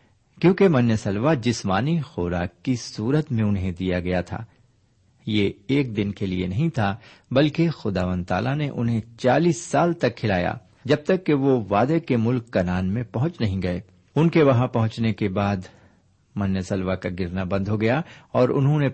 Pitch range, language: 95-135 Hz, Urdu